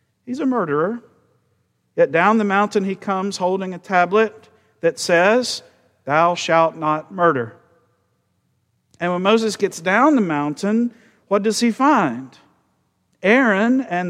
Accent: American